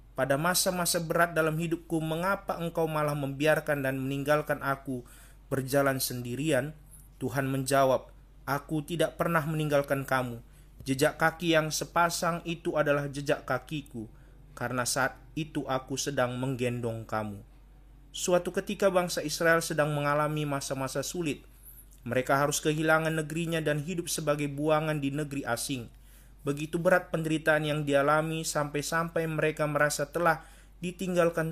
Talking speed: 125 wpm